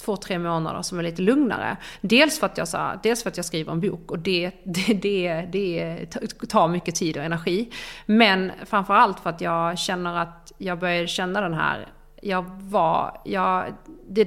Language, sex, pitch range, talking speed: Swedish, female, 175-225 Hz, 190 wpm